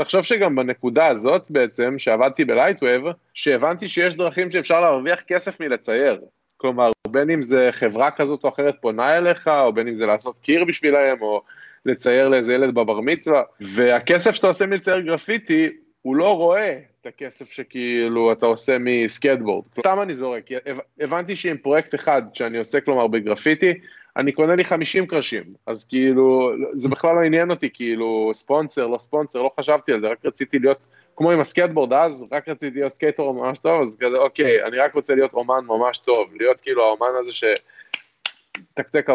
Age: 20-39